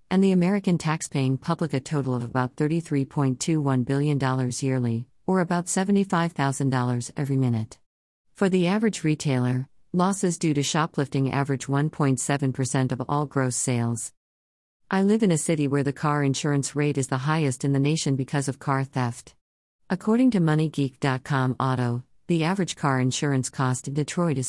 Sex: female